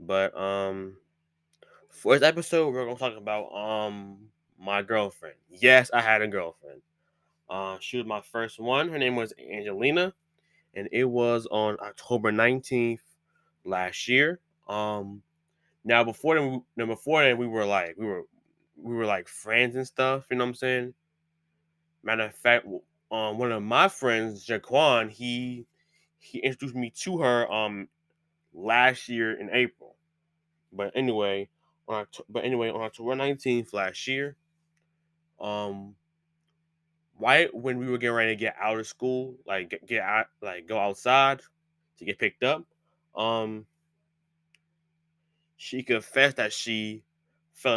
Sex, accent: male, American